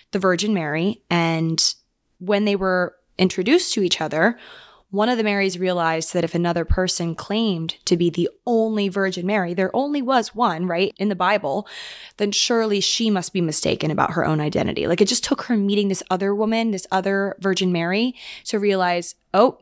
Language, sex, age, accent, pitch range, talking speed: English, female, 20-39, American, 170-210 Hz, 185 wpm